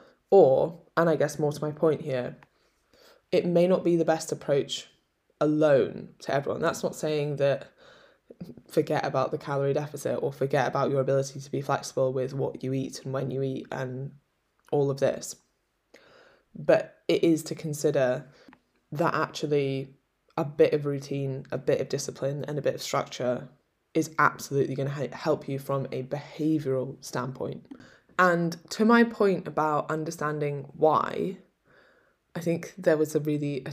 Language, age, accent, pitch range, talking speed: English, 10-29, British, 135-160 Hz, 165 wpm